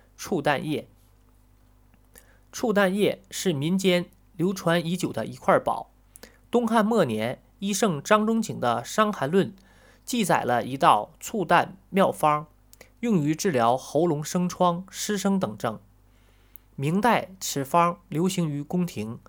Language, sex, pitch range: Chinese, male, 125-195 Hz